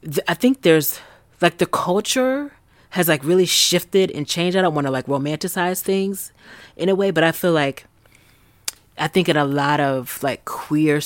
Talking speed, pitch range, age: 185 wpm, 140-180 Hz, 30-49